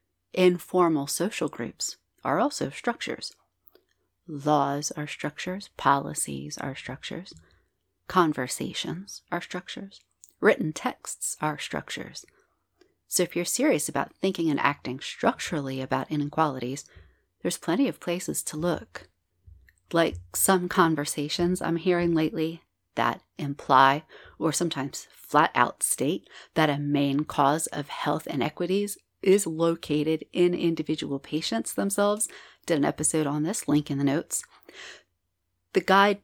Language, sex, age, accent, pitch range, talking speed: English, female, 30-49, American, 140-180 Hz, 120 wpm